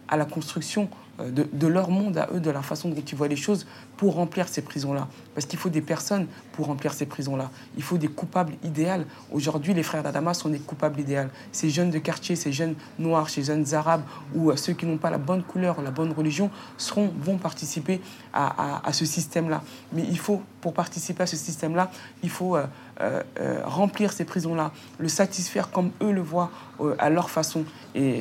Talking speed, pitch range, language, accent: 210 wpm, 150-180 Hz, French, French